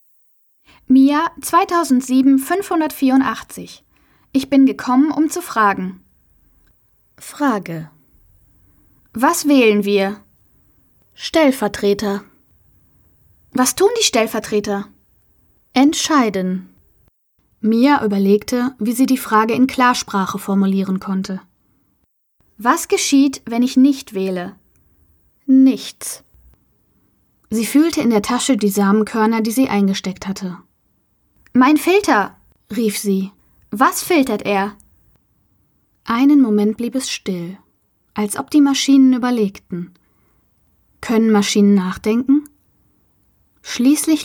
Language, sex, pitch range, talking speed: German, female, 195-265 Hz, 90 wpm